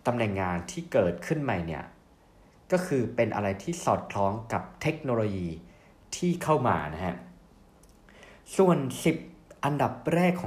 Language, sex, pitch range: Thai, male, 95-135 Hz